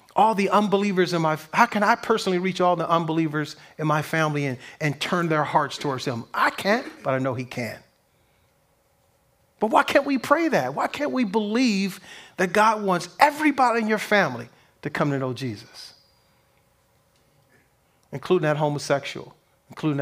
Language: English